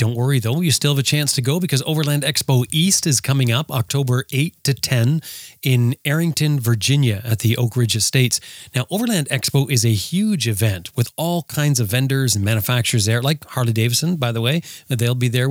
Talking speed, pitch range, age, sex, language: 200 wpm, 115-145 Hz, 30-49, male, English